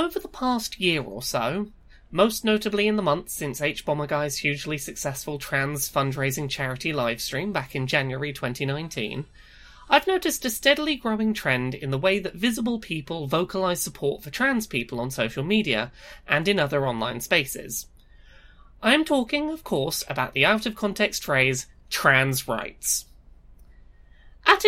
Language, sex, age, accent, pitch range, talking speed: English, male, 20-39, British, 135-220 Hz, 155 wpm